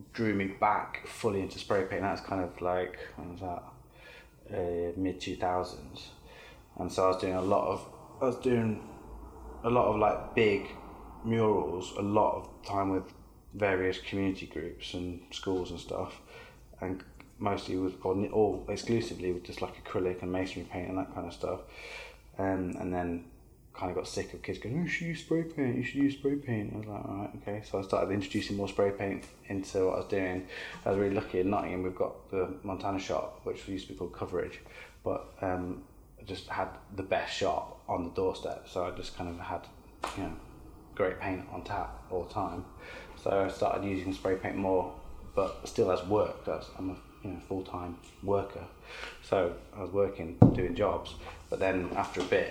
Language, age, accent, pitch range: English, 20-39, British, 90-100 Hz